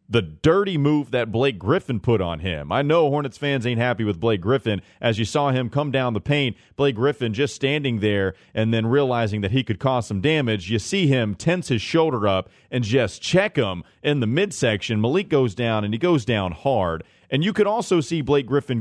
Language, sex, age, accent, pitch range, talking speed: English, male, 30-49, American, 105-140 Hz, 220 wpm